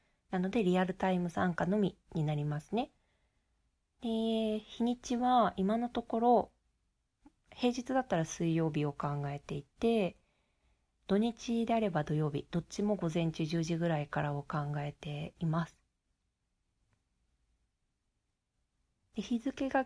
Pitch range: 155-205 Hz